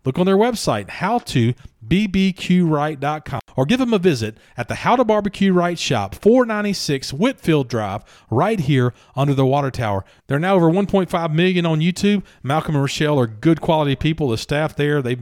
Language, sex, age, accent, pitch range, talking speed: English, male, 40-59, American, 130-175 Hz, 180 wpm